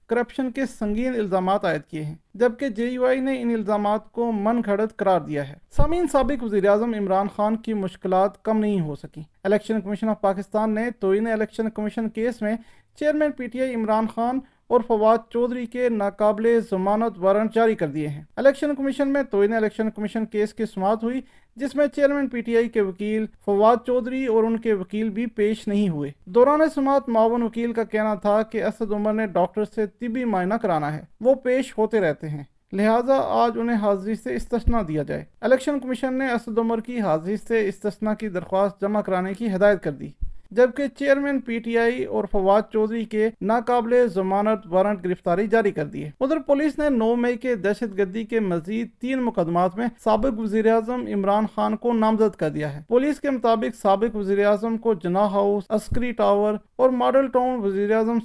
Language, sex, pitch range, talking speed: Urdu, male, 200-235 Hz, 175 wpm